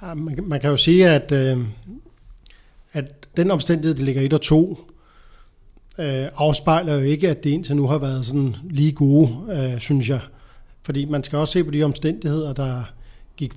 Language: Danish